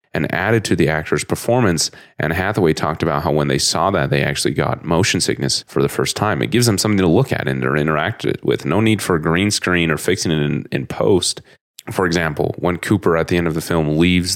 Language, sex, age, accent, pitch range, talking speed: English, male, 30-49, American, 75-95 Hz, 245 wpm